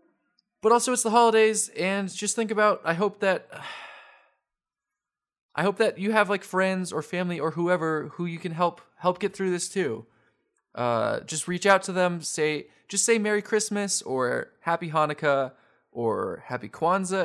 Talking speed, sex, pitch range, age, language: 175 wpm, male, 145-220 Hz, 20-39, English